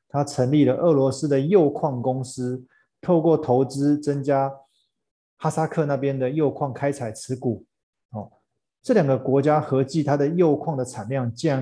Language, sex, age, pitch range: Chinese, male, 20-39, 125-150 Hz